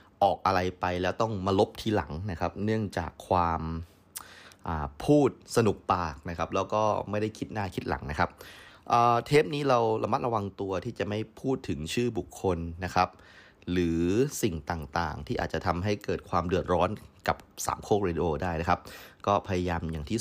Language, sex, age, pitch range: Thai, male, 20-39, 85-105 Hz